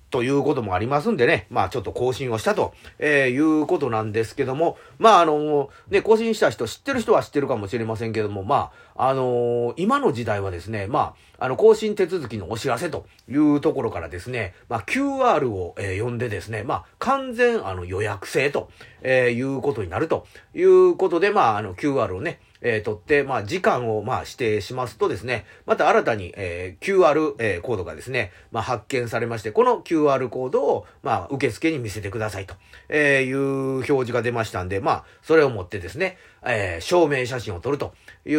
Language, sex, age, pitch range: Japanese, male, 40-59, 110-165 Hz